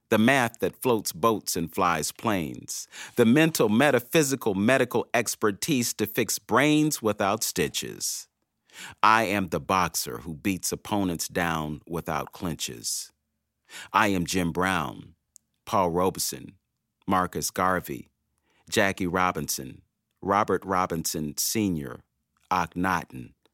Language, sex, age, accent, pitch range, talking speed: English, male, 40-59, American, 80-110 Hz, 105 wpm